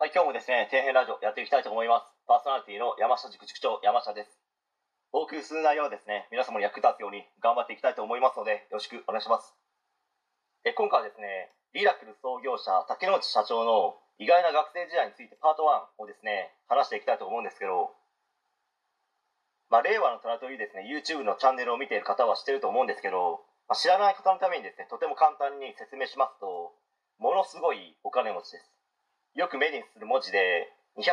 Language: Japanese